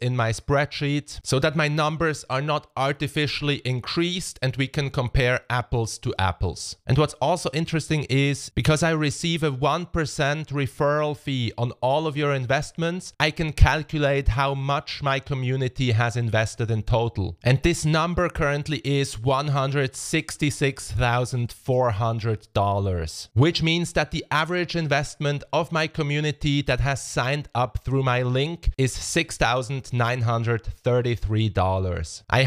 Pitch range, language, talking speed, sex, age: 120-150 Hz, English, 130 wpm, male, 30-49